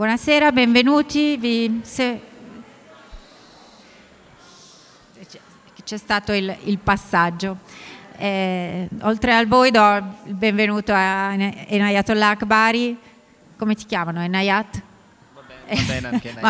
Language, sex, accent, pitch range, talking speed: Italian, female, native, 185-220 Hz, 80 wpm